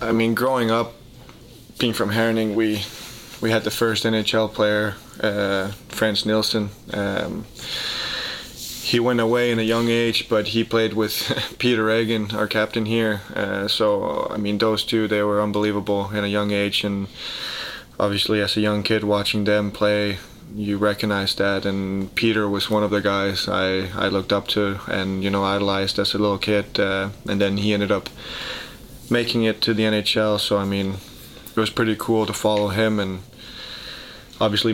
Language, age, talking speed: Finnish, 20-39, 175 wpm